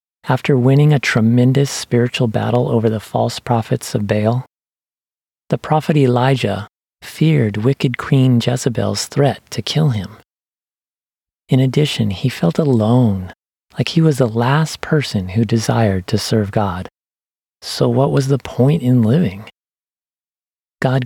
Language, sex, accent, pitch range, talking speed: English, male, American, 110-135 Hz, 135 wpm